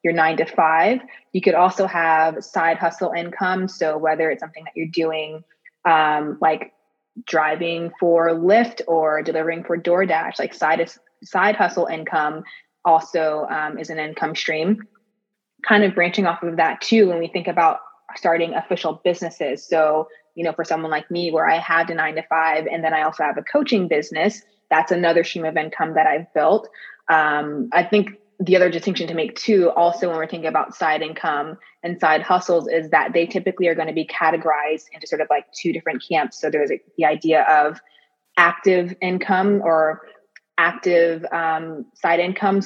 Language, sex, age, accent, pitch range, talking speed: English, female, 20-39, American, 160-180 Hz, 180 wpm